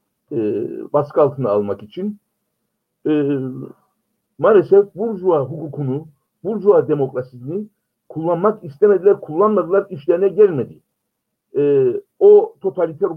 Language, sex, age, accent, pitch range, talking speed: Turkish, male, 60-79, native, 135-215 Hz, 85 wpm